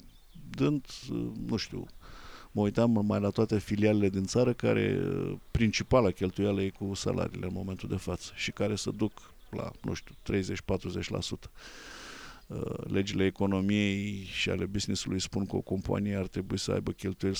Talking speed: 150 wpm